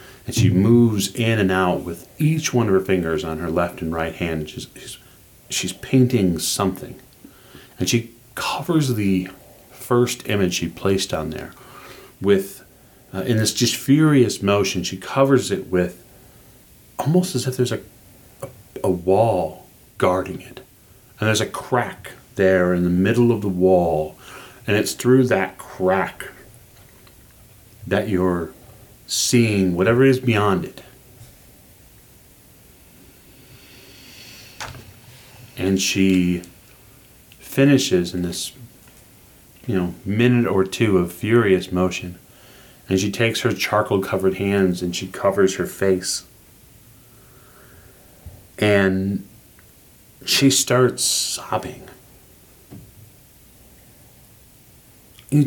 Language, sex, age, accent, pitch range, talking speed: English, male, 40-59, American, 95-125 Hz, 115 wpm